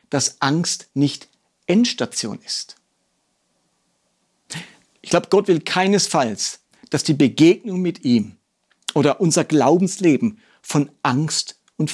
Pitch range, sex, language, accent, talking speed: 170-220 Hz, male, German, German, 105 wpm